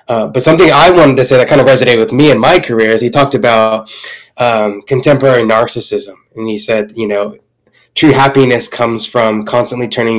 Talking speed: 200 wpm